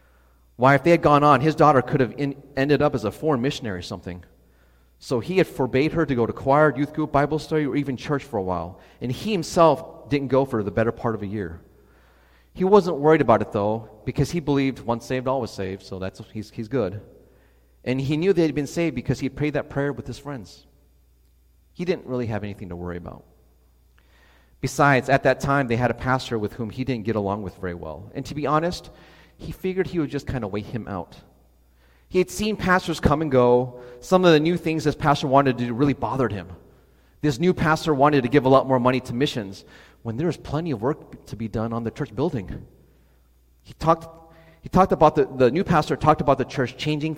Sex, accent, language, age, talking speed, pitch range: male, American, English, 30-49, 230 wpm, 105-150 Hz